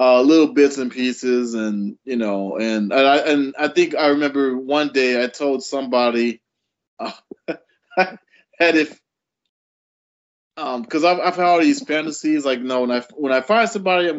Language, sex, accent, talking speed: English, male, American, 170 wpm